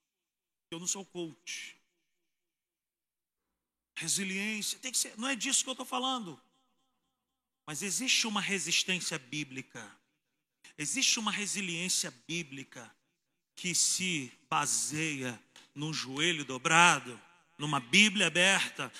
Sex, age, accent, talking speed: male, 40-59, Brazilian, 105 wpm